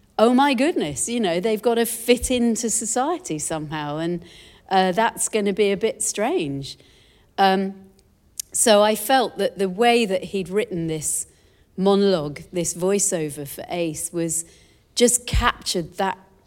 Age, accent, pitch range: 40-59, British, 170-215 Hz